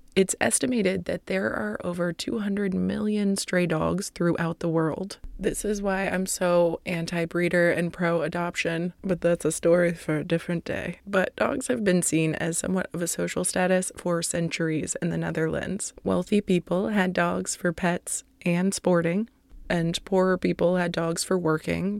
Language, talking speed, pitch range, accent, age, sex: English, 165 wpm, 170-195 Hz, American, 20-39, female